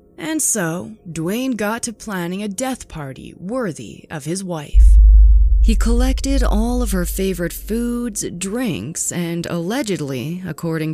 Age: 20-39